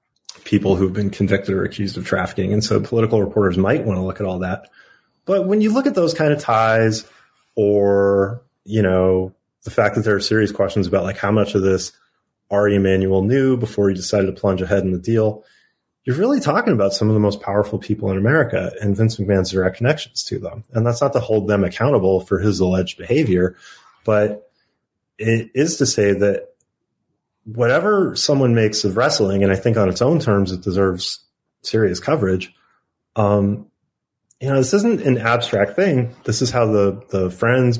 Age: 30-49